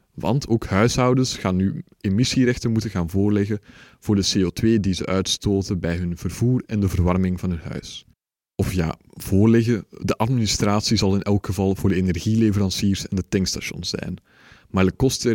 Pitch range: 95-115 Hz